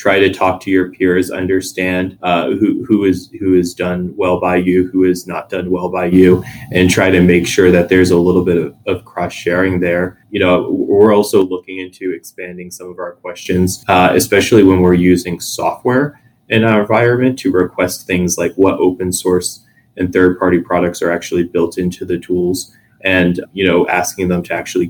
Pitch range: 90-95 Hz